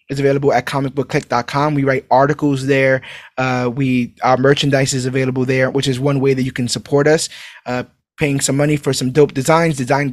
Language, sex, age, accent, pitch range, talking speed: English, male, 20-39, American, 130-160 Hz, 190 wpm